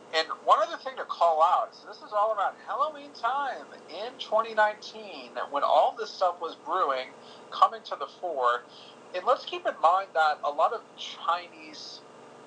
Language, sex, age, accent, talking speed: English, male, 30-49, American, 175 wpm